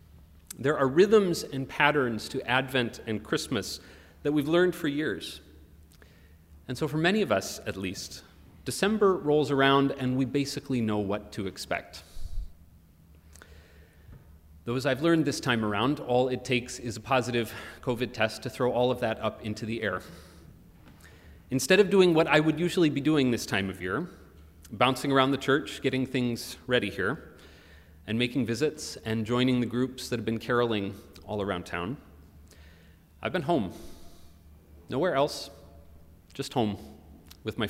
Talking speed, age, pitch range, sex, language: 160 wpm, 30-49, 80-135 Hz, male, English